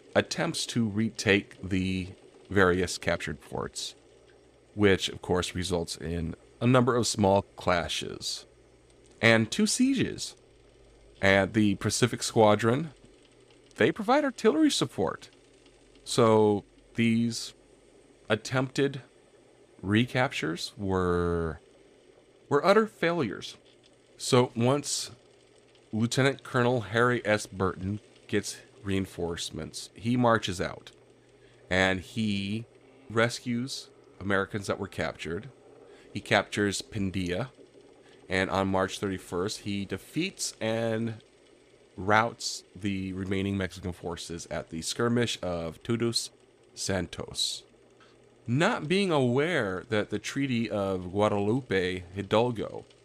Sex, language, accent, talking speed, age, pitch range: male, English, American, 95 wpm, 40-59, 95-120 Hz